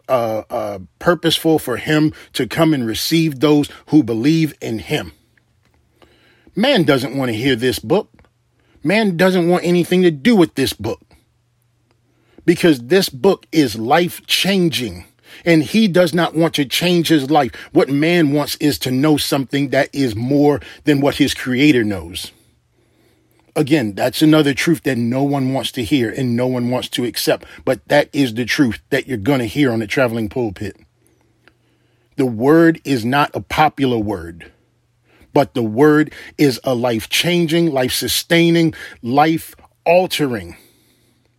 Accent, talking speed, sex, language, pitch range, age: American, 150 wpm, male, English, 120-155 Hz, 40-59